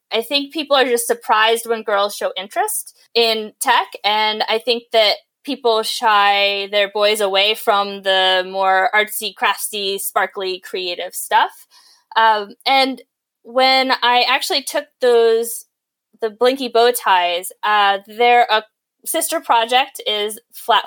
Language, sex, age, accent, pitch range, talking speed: English, female, 20-39, American, 200-260 Hz, 130 wpm